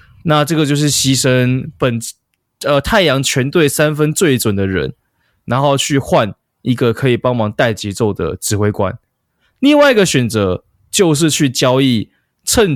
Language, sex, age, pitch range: Chinese, male, 20-39, 115-150 Hz